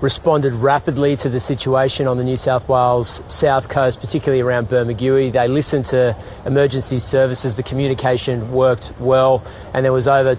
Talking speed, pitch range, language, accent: 160 wpm, 130-200 Hz, Filipino, Australian